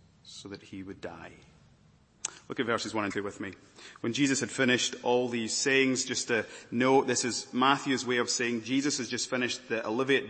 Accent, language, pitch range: British, English, 115-145 Hz